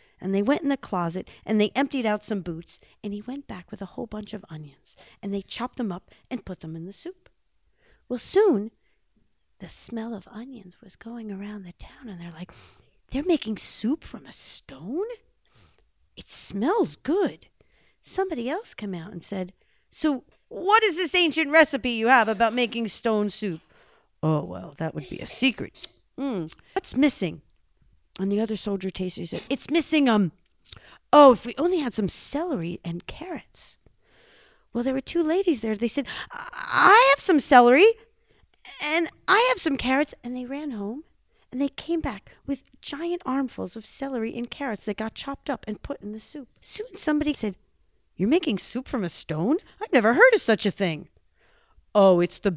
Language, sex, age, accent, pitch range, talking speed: English, female, 50-69, American, 195-290 Hz, 185 wpm